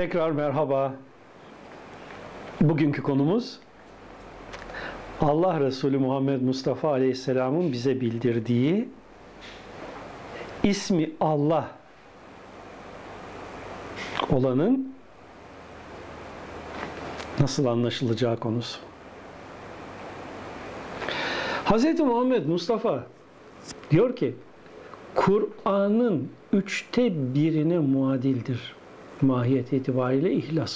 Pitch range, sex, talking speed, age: 120-180 Hz, male, 55 wpm, 60-79